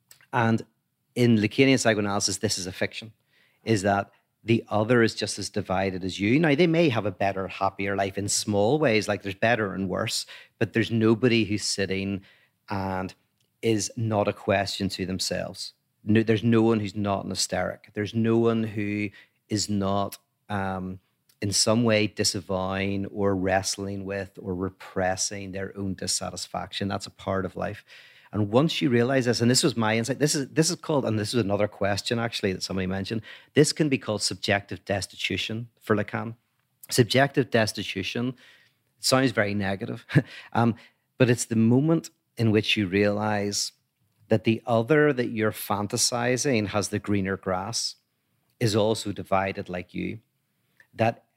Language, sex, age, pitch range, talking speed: English, male, 40-59, 100-115 Hz, 160 wpm